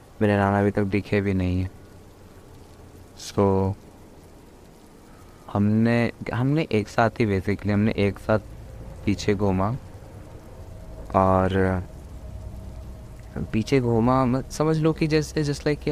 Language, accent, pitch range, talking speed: Hindi, native, 95-115 Hz, 115 wpm